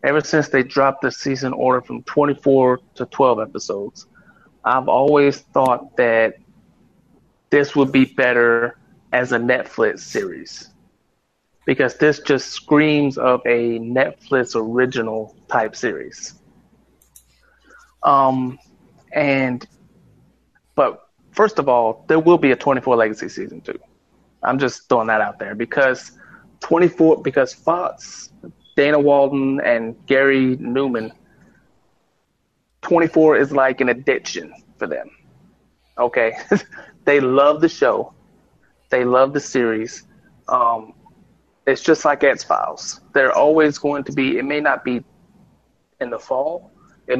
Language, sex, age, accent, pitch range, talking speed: English, male, 30-49, American, 125-145 Hz, 125 wpm